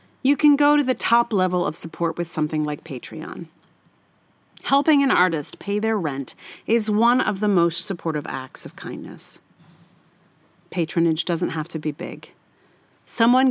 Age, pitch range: 40-59, 170-245 Hz